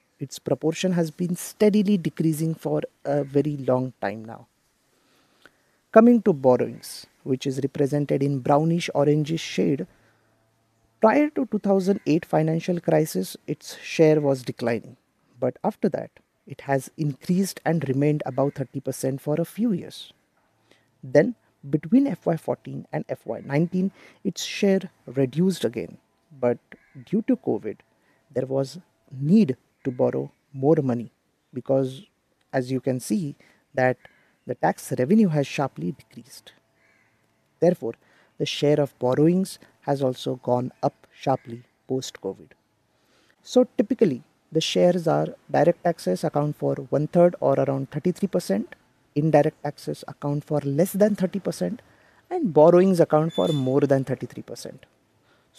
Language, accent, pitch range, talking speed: English, Indian, 130-175 Hz, 125 wpm